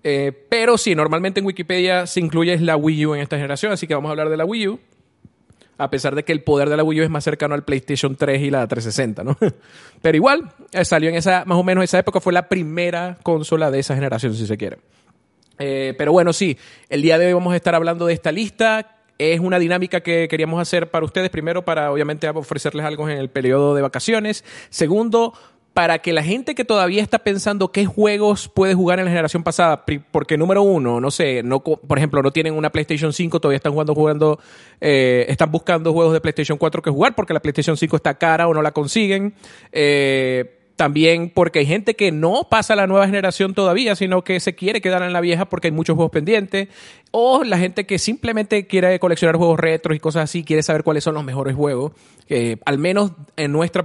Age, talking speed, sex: 30-49, 225 wpm, male